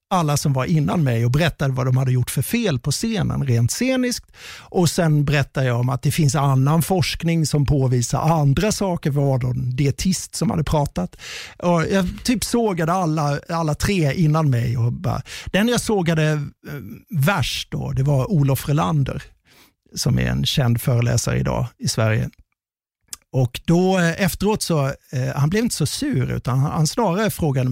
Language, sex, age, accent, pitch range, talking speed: Swedish, male, 50-69, native, 125-165 Hz, 175 wpm